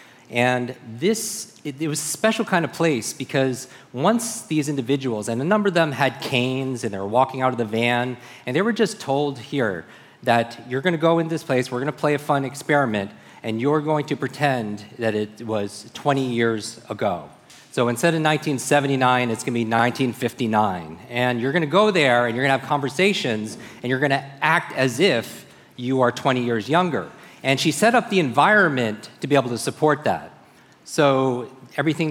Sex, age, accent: male, 40-59, American